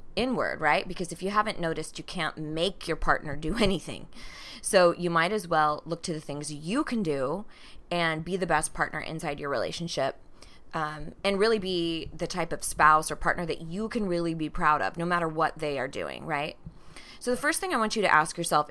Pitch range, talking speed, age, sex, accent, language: 155-195 Hz, 220 wpm, 20-39, female, American, English